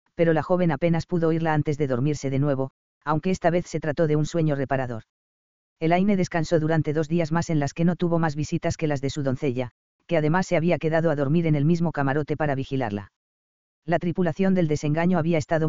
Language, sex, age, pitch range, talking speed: English, female, 40-59, 140-170 Hz, 220 wpm